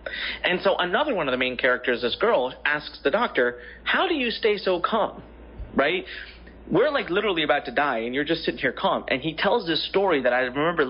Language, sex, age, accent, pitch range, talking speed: English, male, 30-49, American, 130-195 Hz, 220 wpm